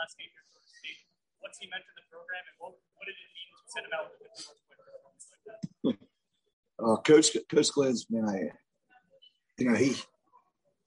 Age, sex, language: 30-49, male, English